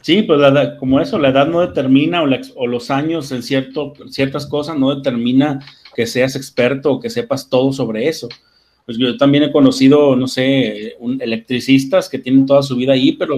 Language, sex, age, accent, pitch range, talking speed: Spanish, male, 30-49, Mexican, 135-180 Hz, 205 wpm